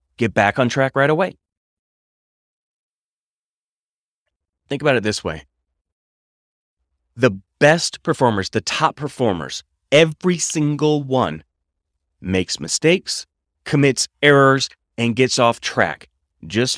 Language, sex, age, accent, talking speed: English, male, 30-49, American, 105 wpm